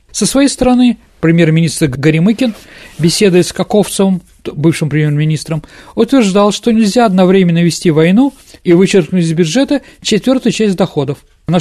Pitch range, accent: 160-220 Hz, native